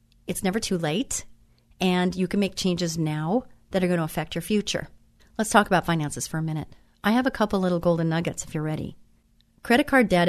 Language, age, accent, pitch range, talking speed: English, 40-59, American, 165-210 Hz, 215 wpm